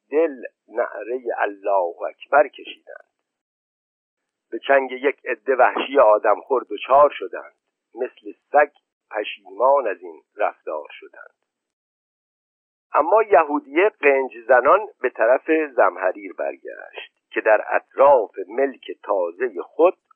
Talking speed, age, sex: 105 wpm, 50-69, male